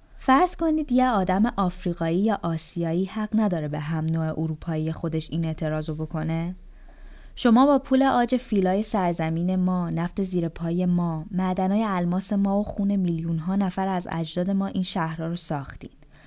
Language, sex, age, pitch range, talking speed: Persian, female, 20-39, 170-230 Hz, 160 wpm